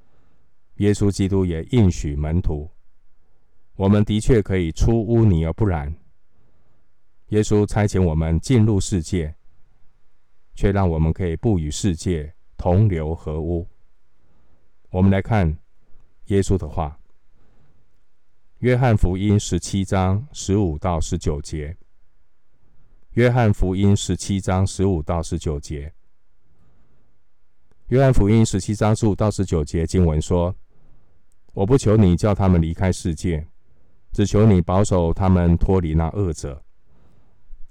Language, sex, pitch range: Chinese, male, 80-105 Hz